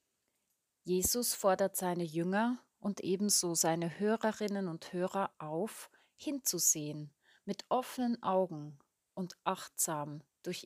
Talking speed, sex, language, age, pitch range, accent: 100 wpm, female, German, 30-49, 165-210 Hz, German